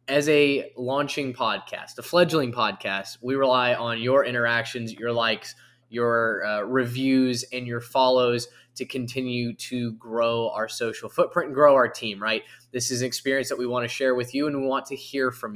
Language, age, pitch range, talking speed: English, 10-29, 115-130 Hz, 190 wpm